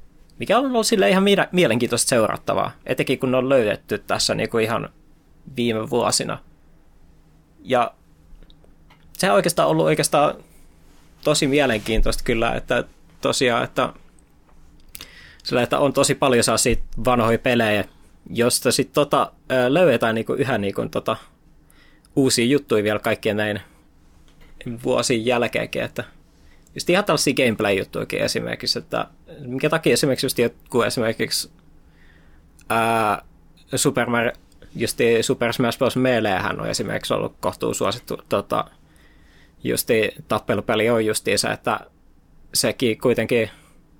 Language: Finnish